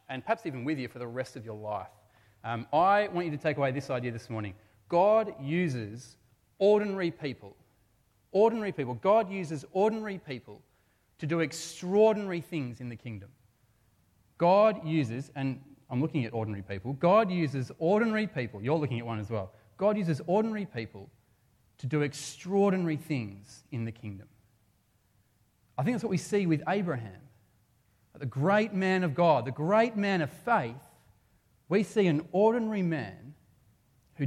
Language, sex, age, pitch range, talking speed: English, male, 30-49, 110-150 Hz, 160 wpm